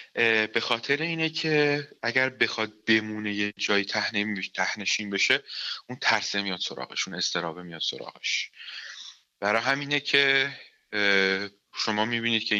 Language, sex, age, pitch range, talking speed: Persian, male, 30-49, 105-125 Hz, 115 wpm